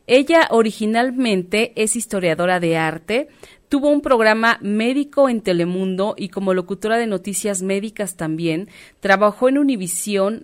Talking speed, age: 125 wpm, 30-49